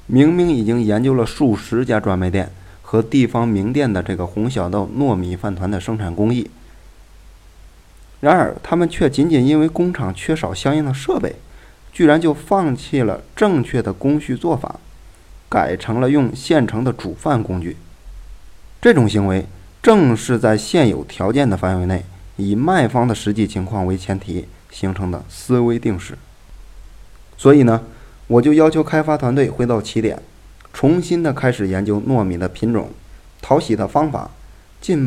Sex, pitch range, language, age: male, 95-135 Hz, Chinese, 20-39